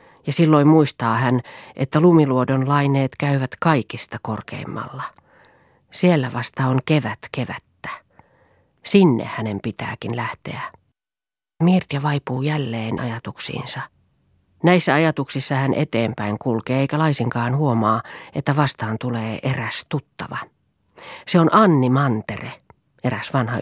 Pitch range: 120-150 Hz